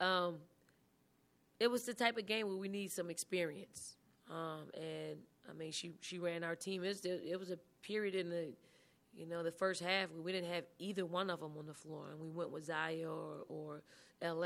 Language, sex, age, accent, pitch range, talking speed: English, female, 20-39, American, 165-185 Hz, 220 wpm